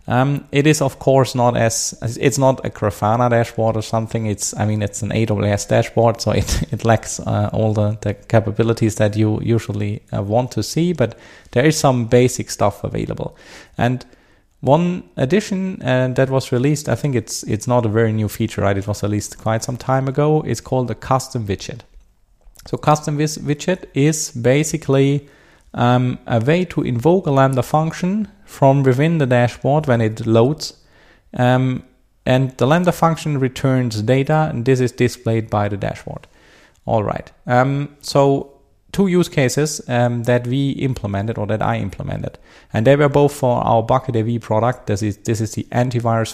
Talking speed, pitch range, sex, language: 175 wpm, 110-140 Hz, male, English